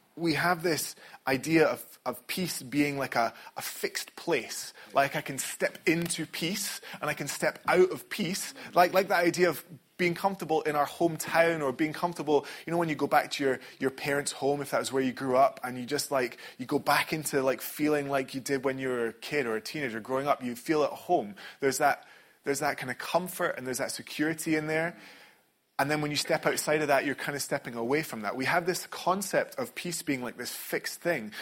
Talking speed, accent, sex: 235 wpm, British, male